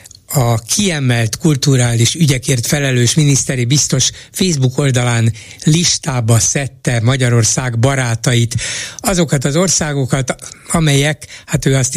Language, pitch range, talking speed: Hungarian, 115-150 Hz, 100 wpm